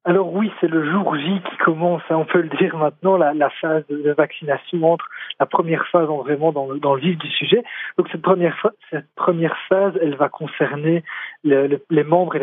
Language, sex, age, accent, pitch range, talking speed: French, male, 40-59, French, 145-180 Hz, 195 wpm